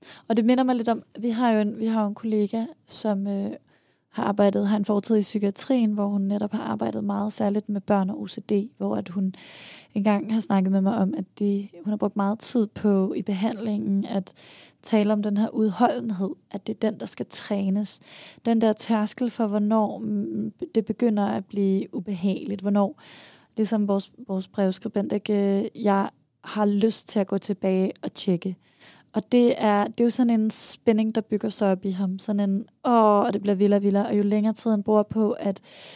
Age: 20-39